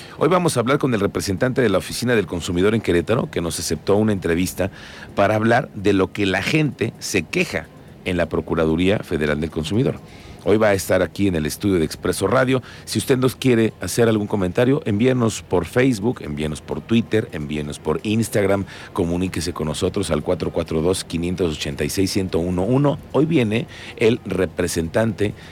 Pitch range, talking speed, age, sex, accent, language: 85-115 Hz, 170 wpm, 50-69, male, Mexican, Spanish